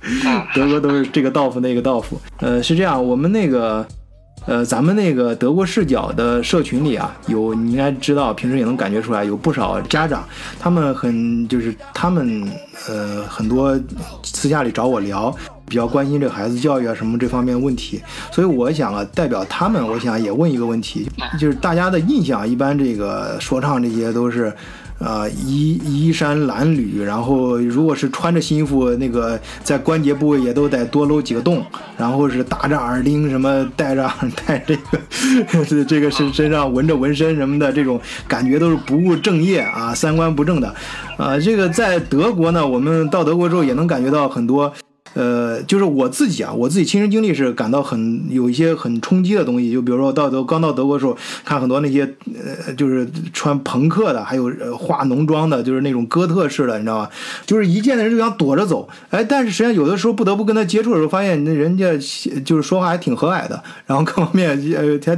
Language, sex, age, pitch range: Chinese, male, 20-39, 125-170 Hz